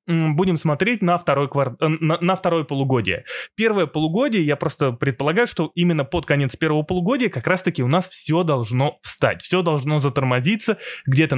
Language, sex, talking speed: Russian, male, 160 wpm